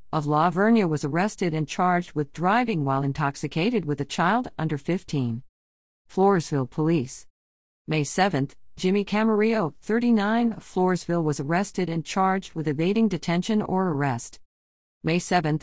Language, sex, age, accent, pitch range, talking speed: English, female, 50-69, American, 145-200 Hz, 140 wpm